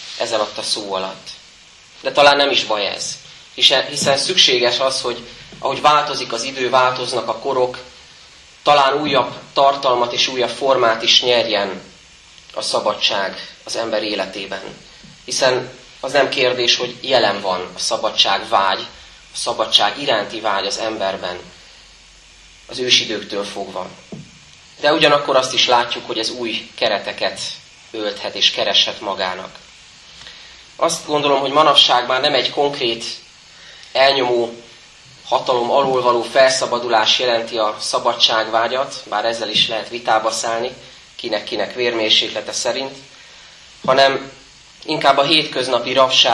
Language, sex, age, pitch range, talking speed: Hungarian, male, 30-49, 115-135 Hz, 125 wpm